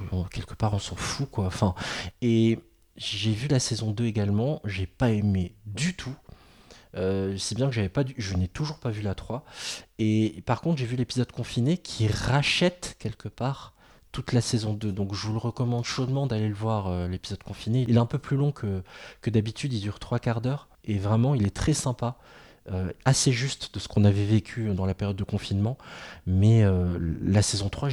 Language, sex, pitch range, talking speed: French, male, 95-125 Hz, 210 wpm